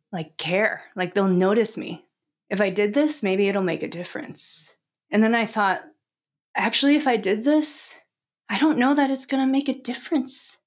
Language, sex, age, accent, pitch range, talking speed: English, female, 20-39, American, 180-230 Hz, 185 wpm